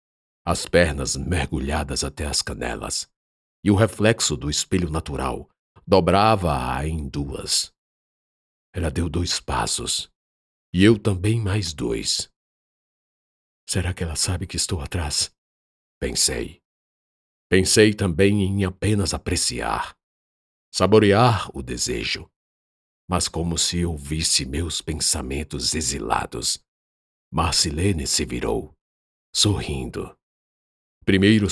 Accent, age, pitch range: Brazilian, 50-69, 70-95 Hz